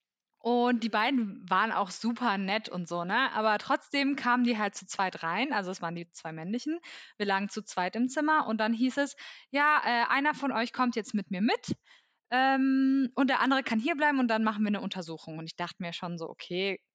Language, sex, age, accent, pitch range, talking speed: English, female, 20-39, German, 195-255 Hz, 220 wpm